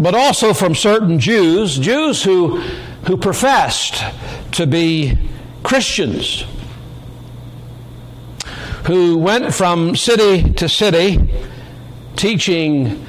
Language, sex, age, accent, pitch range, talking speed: English, male, 60-79, American, 125-160 Hz, 85 wpm